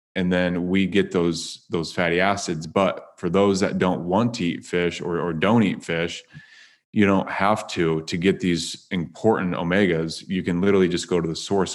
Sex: male